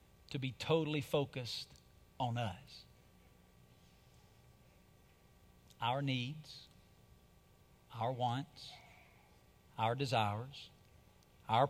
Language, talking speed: English, 65 wpm